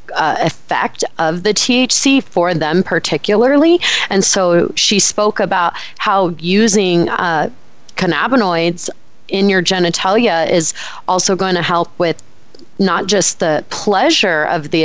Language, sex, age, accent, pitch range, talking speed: English, female, 30-49, American, 165-190 Hz, 130 wpm